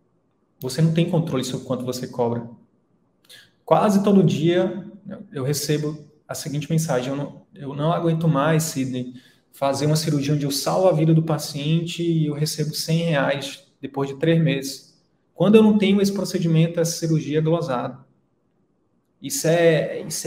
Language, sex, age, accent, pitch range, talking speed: Portuguese, male, 20-39, Brazilian, 140-170 Hz, 165 wpm